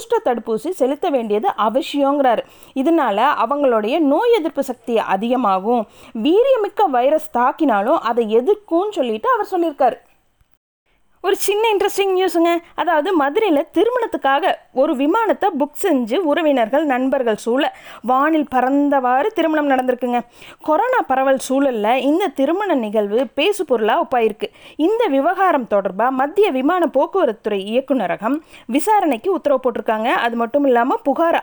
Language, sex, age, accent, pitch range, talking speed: Tamil, female, 20-39, native, 235-320 Hz, 110 wpm